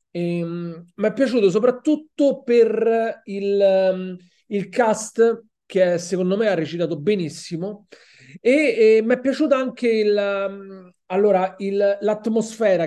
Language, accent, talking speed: Italian, native, 105 wpm